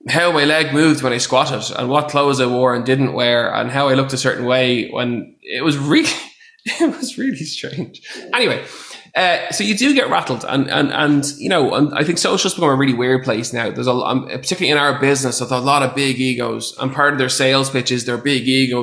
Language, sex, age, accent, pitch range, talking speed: English, male, 20-39, Irish, 125-150 Hz, 240 wpm